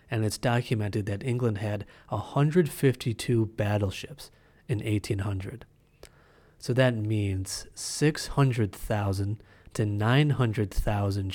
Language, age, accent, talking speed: English, 30-49, American, 85 wpm